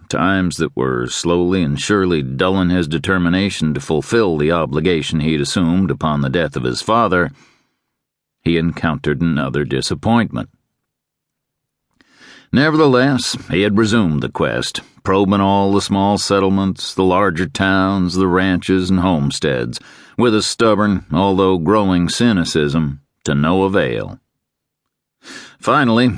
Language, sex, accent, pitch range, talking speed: English, male, American, 80-100 Hz, 120 wpm